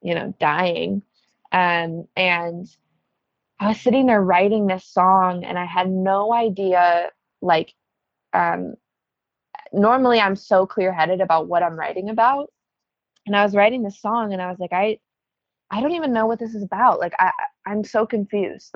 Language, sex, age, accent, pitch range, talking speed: English, female, 20-39, American, 175-205 Hz, 170 wpm